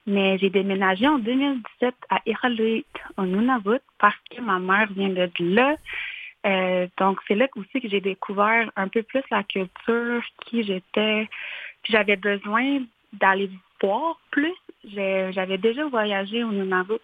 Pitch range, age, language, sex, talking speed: 195-245 Hz, 30-49, French, female, 150 wpm